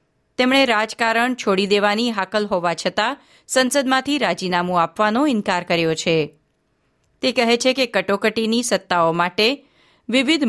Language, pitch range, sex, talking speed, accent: Gujarati, 185-245 Hz, female, 120 wpm, native